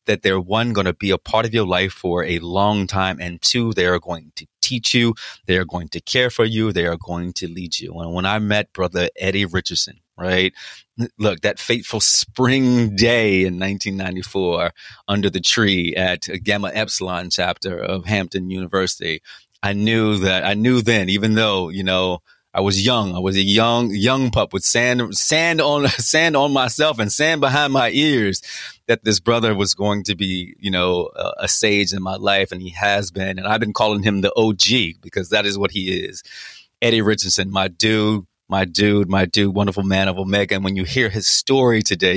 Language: English